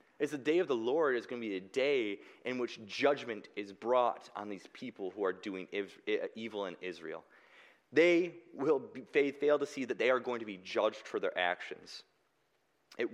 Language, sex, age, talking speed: English, male, 20-39, 190 wpm